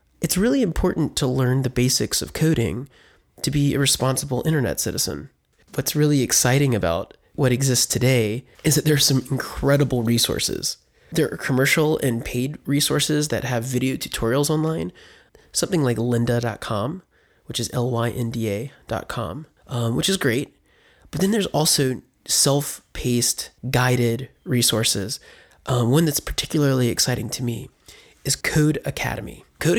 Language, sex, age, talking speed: English, male, 20-39, 135 wpm